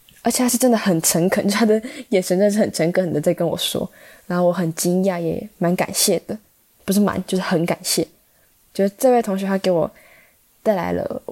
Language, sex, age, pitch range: Chinese, female, 10-29, 175-210 Hz